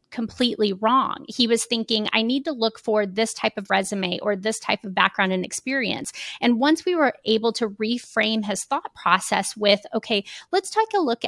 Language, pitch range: English, 200-245 Hz